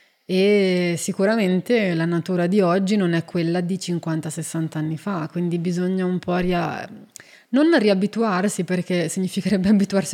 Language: Italian